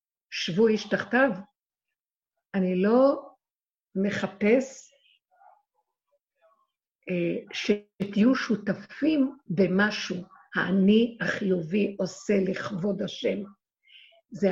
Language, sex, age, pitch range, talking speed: Hebrew, female, 50-69, 190-250 Hz, 60 wpm